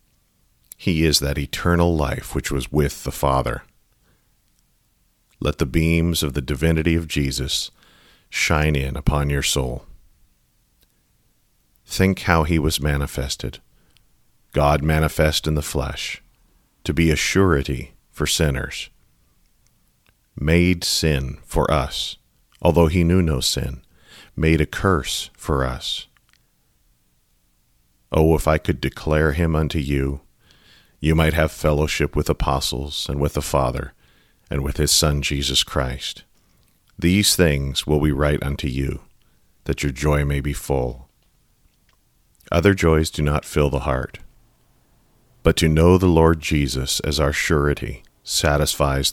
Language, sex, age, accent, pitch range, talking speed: English, male, 40-59, American, 70-80 Hz, 130 wpm